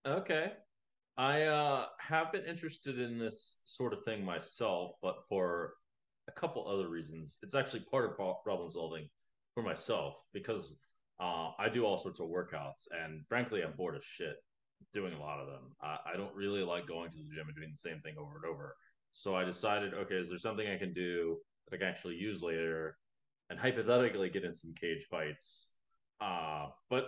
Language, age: English, 30-49